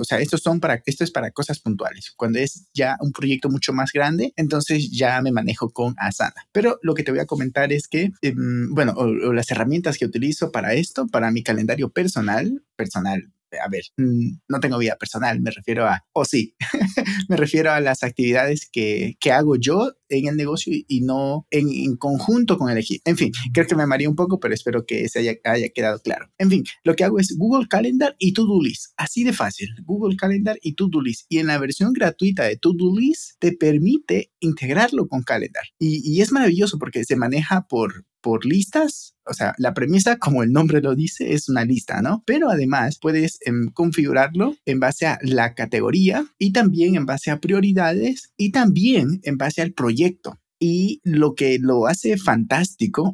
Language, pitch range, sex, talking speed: Spanish, 130-185 Hz, male, 195 wpm